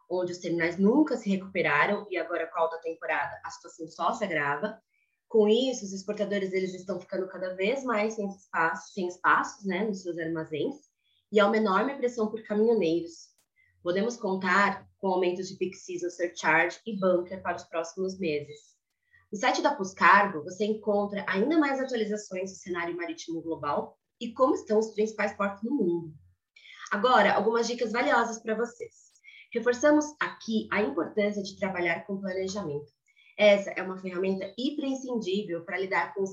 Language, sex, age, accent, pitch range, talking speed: Portuguese, female, 20-39, Brazilian, 175-225 Hz, 165 wpm